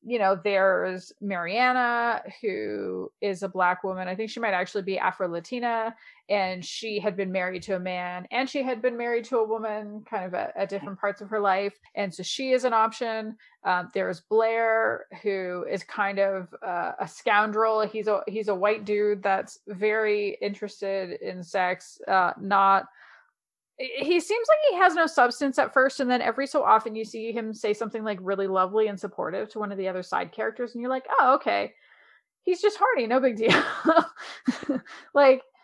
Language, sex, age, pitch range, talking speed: English, female, 30-49, 195-255 Hz, 190 wpm